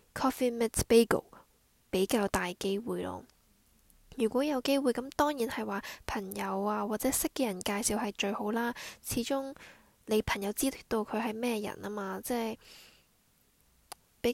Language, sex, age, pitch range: Chinese, female, 10-29, 205-255 Hz